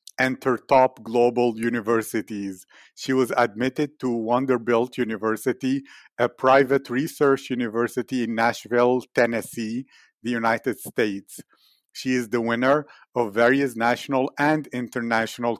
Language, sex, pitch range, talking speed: English, male, 115-130 Hz, 110 wpm